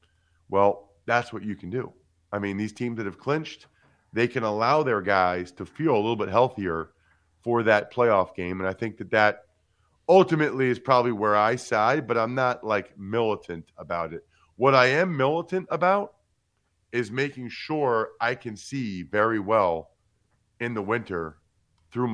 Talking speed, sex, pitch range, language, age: 170 wpm, male, 95-125 Hz, English, 40-59